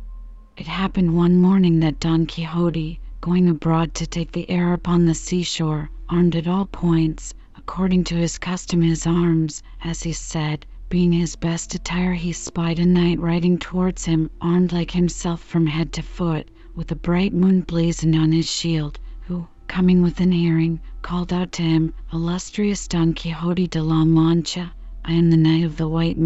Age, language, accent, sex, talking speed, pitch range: 40-59, English, American, female, 175 wpm, 165-180 Hz